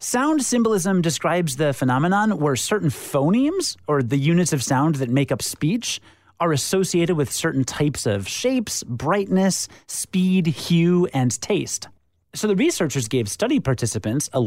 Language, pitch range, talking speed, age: English, 130-205 Hz, 150 wpm, 30-49